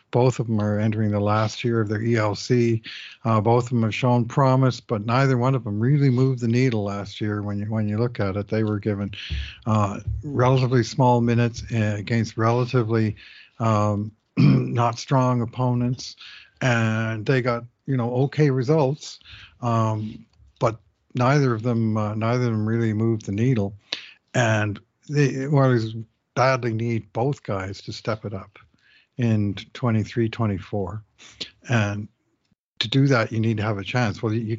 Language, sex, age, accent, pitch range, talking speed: English, male, 50-69, American, 110-125 Hz, 160 wpm